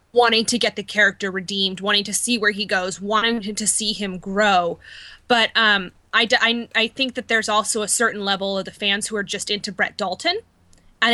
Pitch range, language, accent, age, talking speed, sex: 205-240 Hz, English, American, 20-39, 210 wpm, female